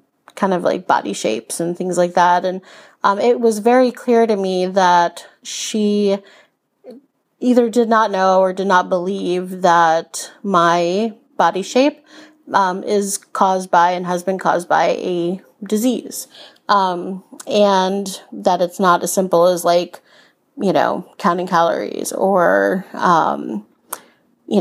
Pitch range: 185-225 Hz